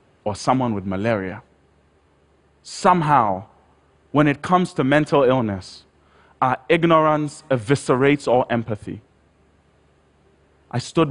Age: 30-49